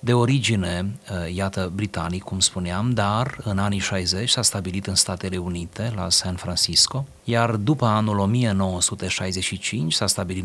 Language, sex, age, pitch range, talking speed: Romanian, male, 30-49, 90-115 Hz, 140 wpm